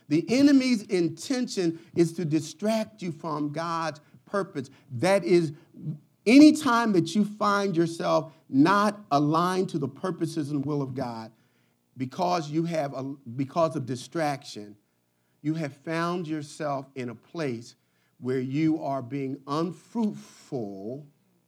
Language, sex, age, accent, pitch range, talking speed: English, male, 50-69, American, 135-210 Hz, 130 wpm